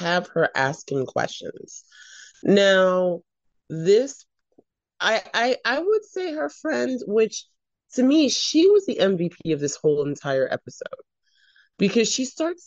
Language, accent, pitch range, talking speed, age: English, American, 150-230 Hz, 135 wpm, 30-49